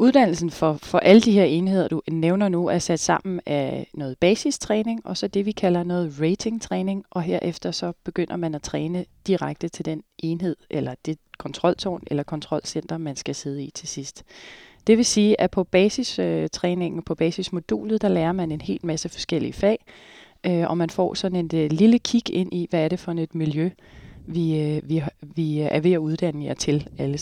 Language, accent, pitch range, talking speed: Danish, native, 160-200 Hz, 190 wpm